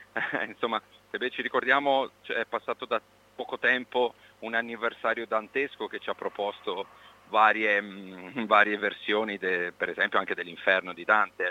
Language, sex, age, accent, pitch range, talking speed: Italian, male, 40-59, native, 105-125 Hz, 145 wpm